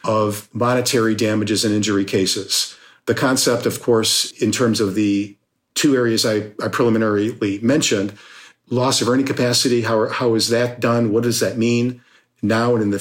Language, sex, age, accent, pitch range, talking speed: English, male, 50-69, American, 110-125 Hz, 175 wpm